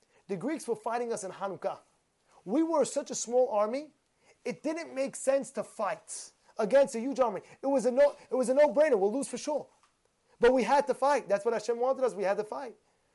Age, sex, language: 30-49, male, English